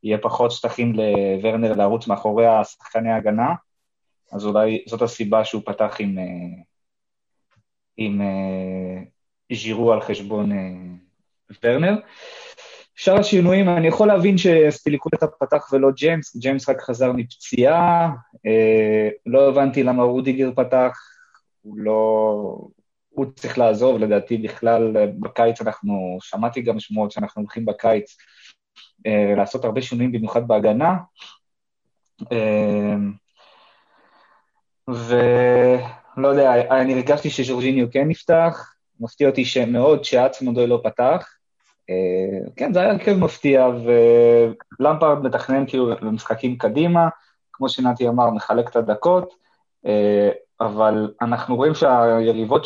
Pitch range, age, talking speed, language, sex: 110-135 Hz, 20-39, 110 wpm, Hebrew, male